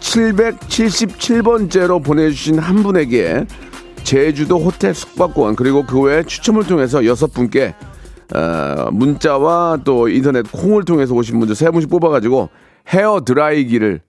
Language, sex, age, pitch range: Korean, male, 40-59, 115-170 Hz